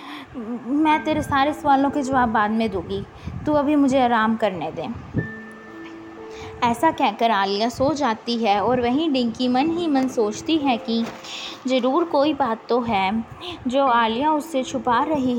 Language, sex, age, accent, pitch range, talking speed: Hindi, female, 20-39, native, 225-275 Hz, 160 wpm